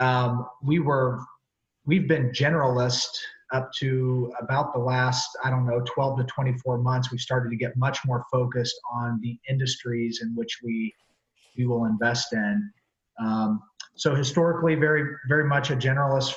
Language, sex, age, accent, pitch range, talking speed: English, male, 30-49, American, 120-140 Hz, 160 wpm